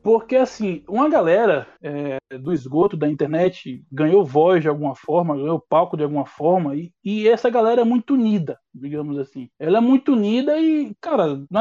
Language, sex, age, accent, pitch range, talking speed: Portuguese, male, 20-39, Brazilian, 165-230 Hz, 180 wpm